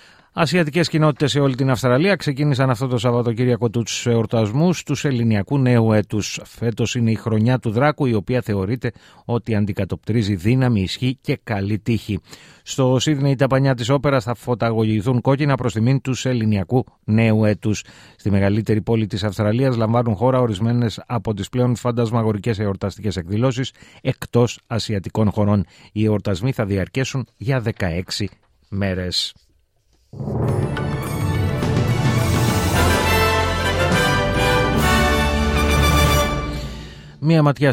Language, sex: Greek, male